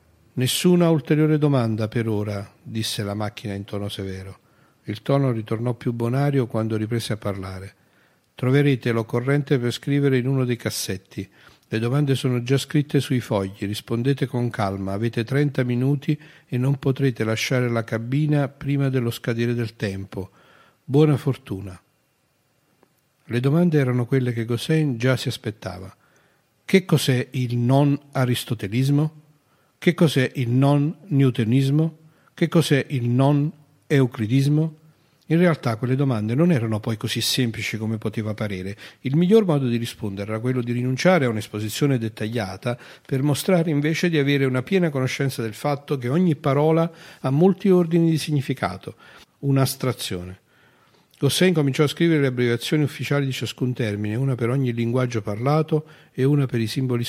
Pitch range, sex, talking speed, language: 115-145 Hz, male, 145 wpm, Italian